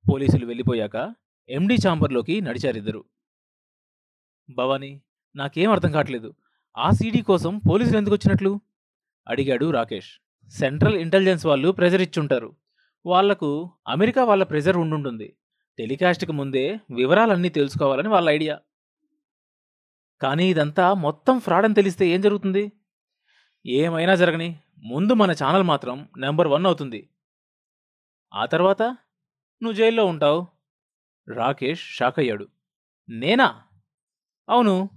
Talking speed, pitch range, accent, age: 100 wpm, 145-195 Hz, native, 20-39